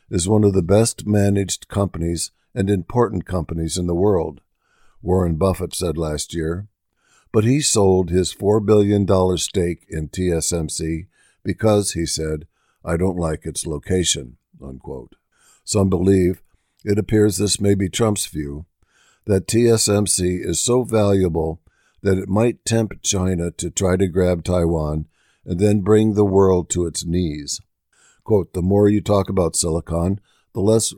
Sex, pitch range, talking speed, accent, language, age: male, 85-105 Hz, 145 wpm, American, English, 60-79